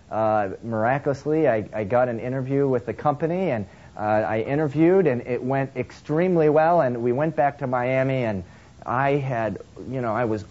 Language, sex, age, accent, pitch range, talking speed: English, male, 40-59, American, 110-150 Hz, 185 wpm